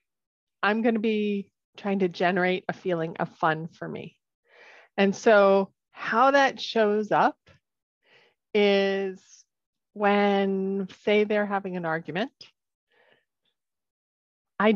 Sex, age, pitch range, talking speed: female, 30-49, 185-230 Hz, 105 wpm